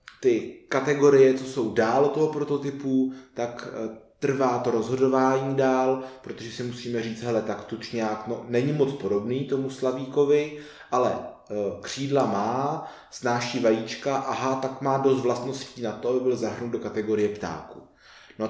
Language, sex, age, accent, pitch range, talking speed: Czech, male, 20-39, native, 115-135 Hz, 145 wpm